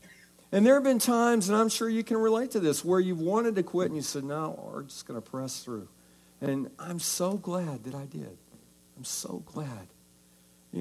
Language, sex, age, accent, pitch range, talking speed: English, male, 60-79, American, 120-190 Hz, 215 wpm